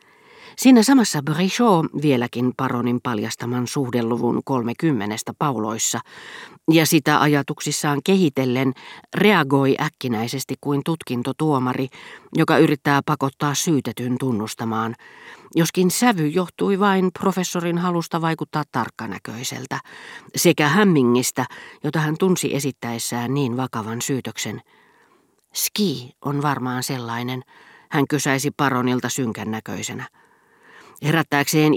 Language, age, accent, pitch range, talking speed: Finnish, 40-59, native, 125-160 Hz, 90 wpm